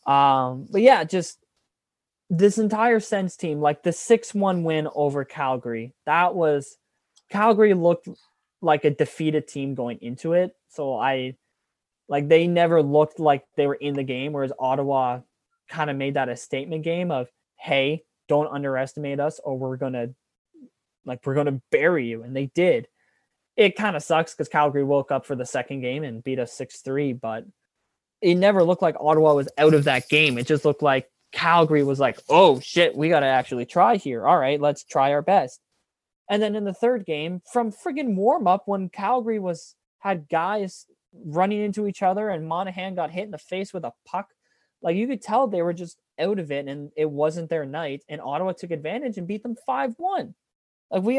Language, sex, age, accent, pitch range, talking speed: English, male, 20-39, American, 140-195 Hz, 195 wpm